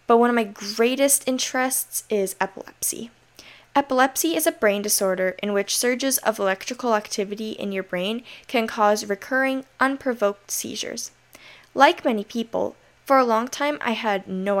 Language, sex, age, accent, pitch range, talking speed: English, female, 10-29, American, 195-245 Hz, 150 wpm